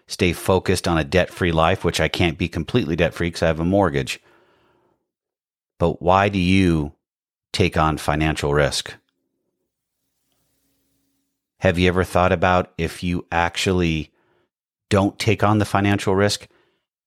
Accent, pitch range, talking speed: American, 80-95 Hz, 135 wpm